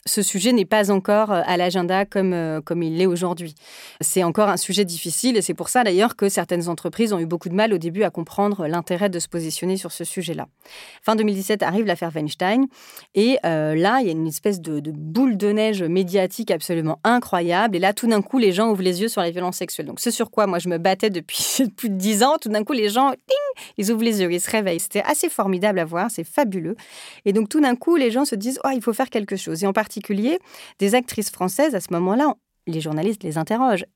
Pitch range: 180-235 Hz